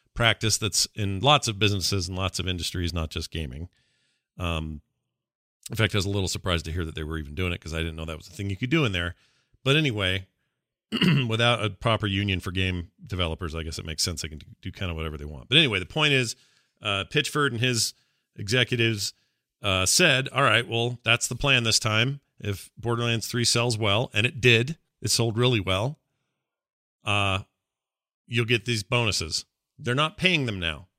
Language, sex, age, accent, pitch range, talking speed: English, male, 40-59, American, 95-130 Hz, 205 wpm